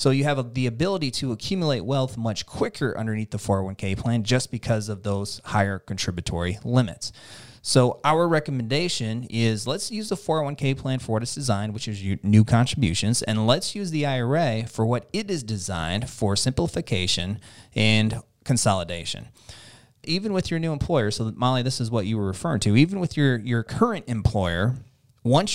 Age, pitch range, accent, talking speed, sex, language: 30-49, 110-145 Hz, American, 170 wpm, male, English